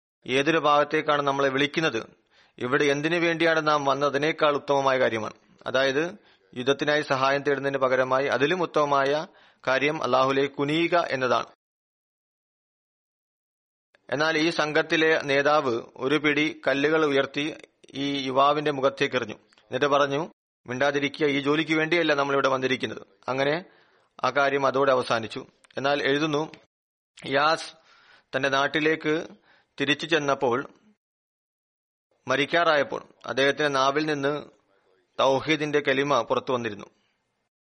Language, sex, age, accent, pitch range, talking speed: Malayalam, male, 40-59, native, 135-150 Hz, 95 wpm